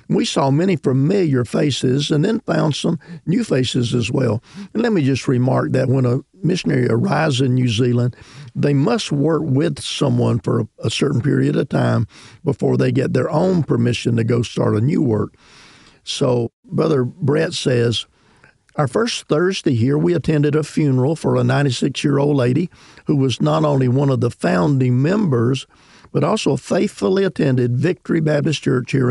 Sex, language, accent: male, English, American